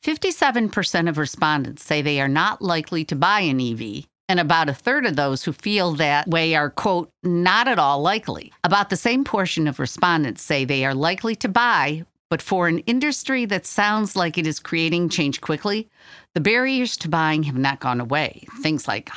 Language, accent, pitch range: English, American, 140-185 Hz